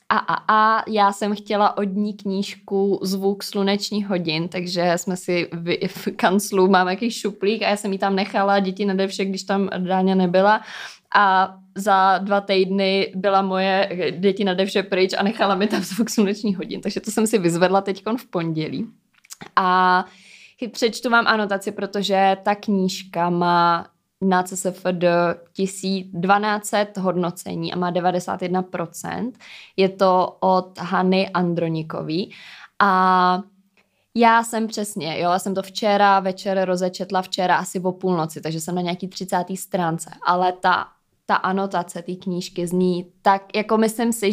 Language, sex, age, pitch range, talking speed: Czech, female, 20-39, 180-205 Hz, 150 wpm